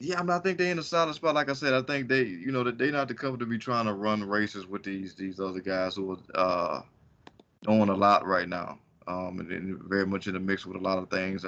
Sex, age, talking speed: male, 20-39, 290 wpm